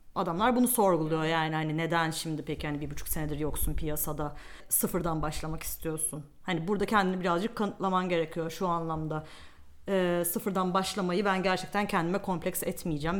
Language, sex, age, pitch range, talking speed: Turkish, female, 40-59, 165-210 Hz, 150 wpm